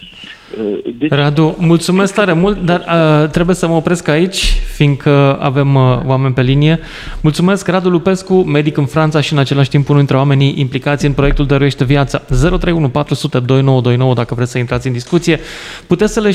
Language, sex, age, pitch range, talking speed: Romanian, male, 20-39, 135-165 Hz, 165 wpm